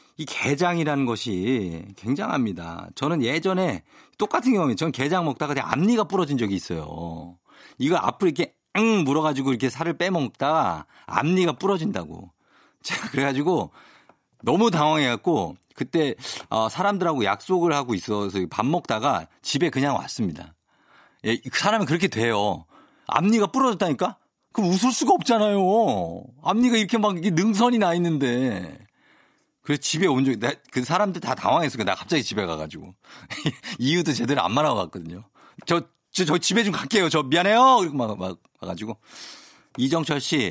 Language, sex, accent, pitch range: Korean, male, native, 105-175 Hz